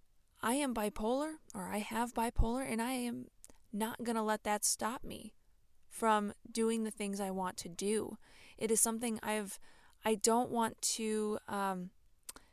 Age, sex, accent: 20-39, female, American